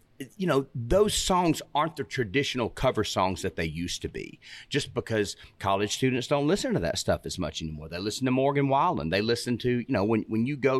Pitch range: 100-140 Hz